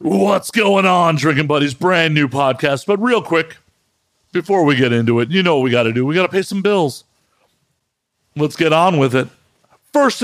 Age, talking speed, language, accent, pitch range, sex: 50-69, 205 wpm, English, American, 165-210 Hz, male